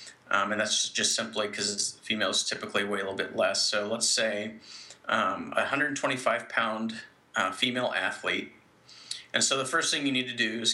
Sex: male